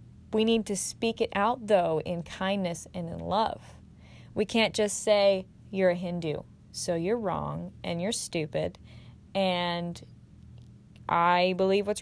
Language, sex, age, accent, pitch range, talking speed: English, female, 20-39, American, 195-270 Hz, 145 wpm